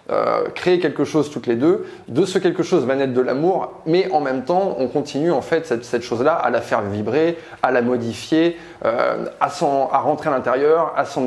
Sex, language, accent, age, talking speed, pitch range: male, French, French, 20-39, 225 wpm, 125-165 Hz